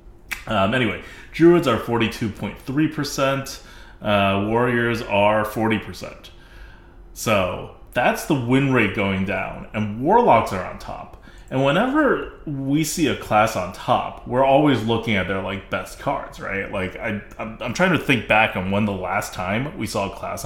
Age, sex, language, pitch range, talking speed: 30-49, male, English, 95-120 Hz, 165 wpm